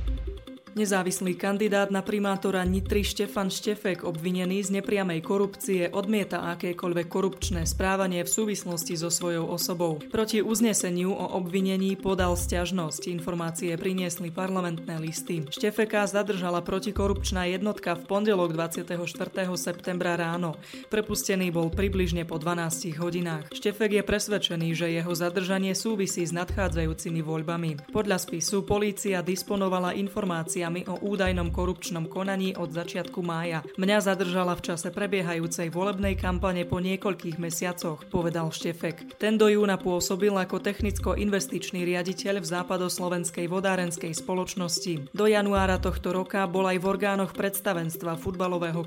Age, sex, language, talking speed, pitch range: 20-39, female, Slovak, 125 wpm, 175-200 Hz